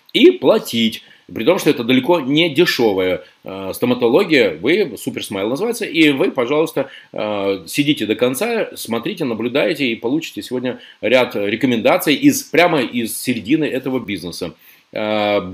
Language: Russian